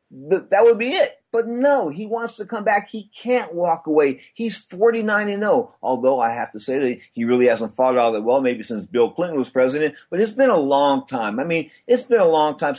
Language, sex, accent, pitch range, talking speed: English, male, American, 140-215 Hz, 240 wpm